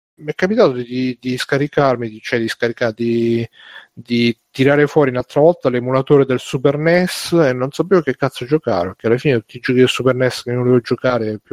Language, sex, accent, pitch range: Italian, male, native, 115-130 Hz